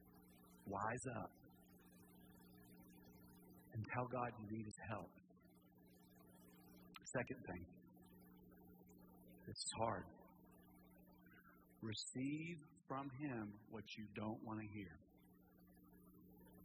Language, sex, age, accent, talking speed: English, male, 50-69, American, 85 wpm